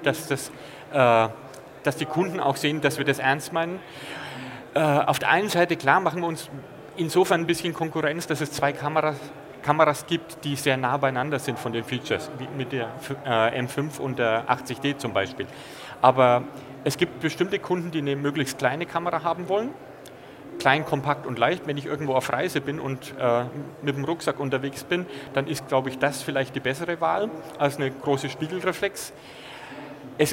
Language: German